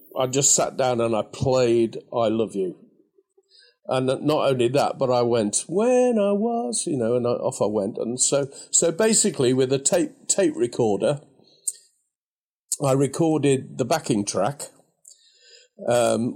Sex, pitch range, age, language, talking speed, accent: male, 125-165 Hz, 50-69, English, 155 wpm, British